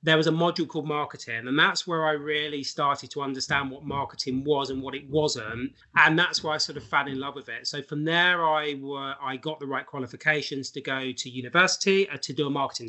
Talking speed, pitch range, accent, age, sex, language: 235 wpm, 130-155 Hz, British, 30-49, male, English